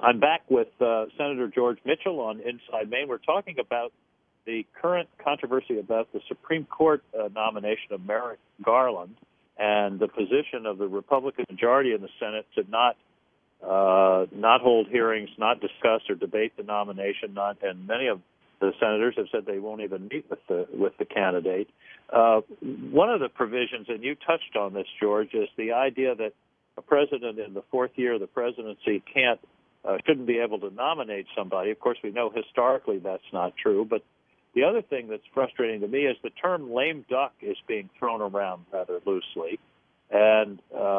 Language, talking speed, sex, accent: English, 180 wpm, male, American